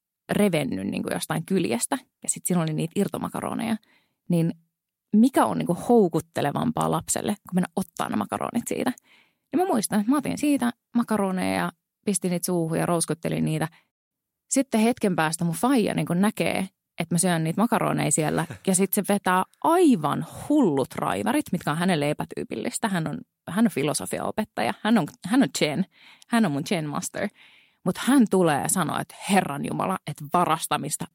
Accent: native